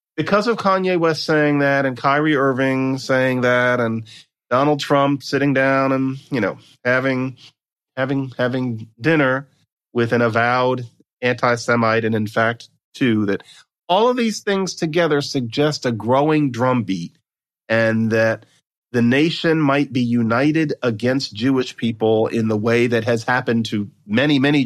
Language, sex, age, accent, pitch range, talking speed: English, male, 40-59, American, 120-155 Hz, 145 wpm